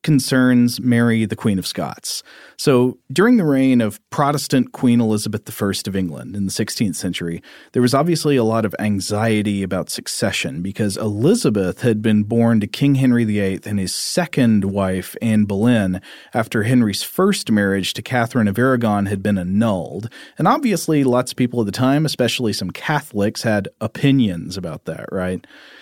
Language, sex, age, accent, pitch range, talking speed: English, male, 40-59, American, 100-125 Hz, 165 wpm